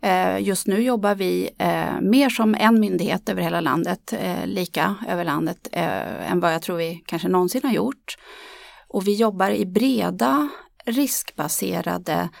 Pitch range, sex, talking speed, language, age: 180-235 Hz, female, 140 wpm, Swedish, 30-49